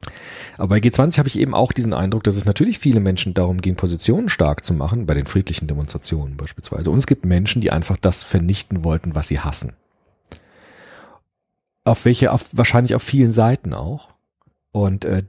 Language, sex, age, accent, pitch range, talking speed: German, male, 40-59, German, 85-115 Hz, 180 wpm